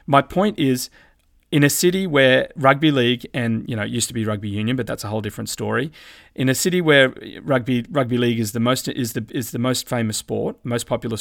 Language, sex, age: English, male, 30-49